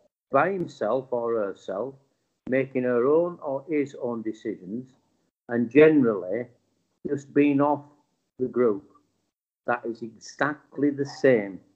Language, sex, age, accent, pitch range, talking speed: English, male, 50-69, British, 115-145 Hz, 115 wpm